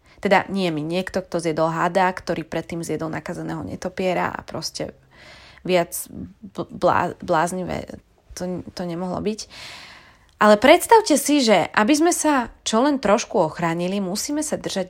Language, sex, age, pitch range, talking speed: Slovak, female, 20-39, 170-240 Hz, 140 wpm